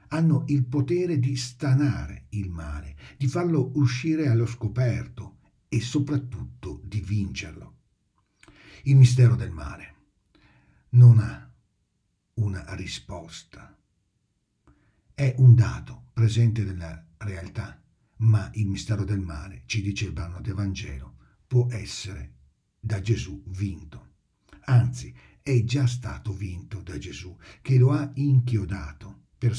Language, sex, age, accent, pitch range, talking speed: Italian, male, 60-79, native, 95-125 Hz, 120 wpm